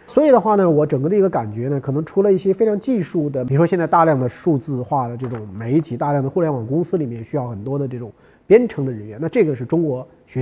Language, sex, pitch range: Chinese, male, 125-170 Hz